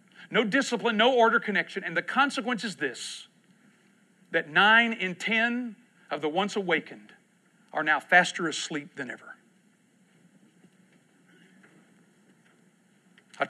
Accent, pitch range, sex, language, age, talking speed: American, 175-215 Hz, male, English, 50-69, 110 wpm